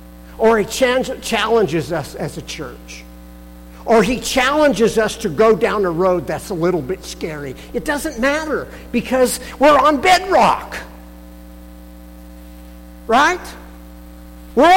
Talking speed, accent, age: 120 wpm, American, 50-69